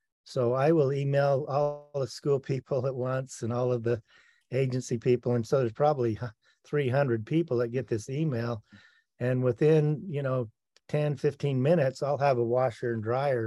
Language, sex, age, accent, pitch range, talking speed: English, male, 40-59, American, 120-140 Hz, 170 wpm